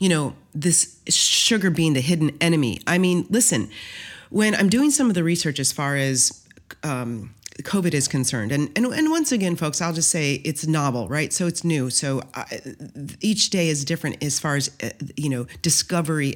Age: 30-49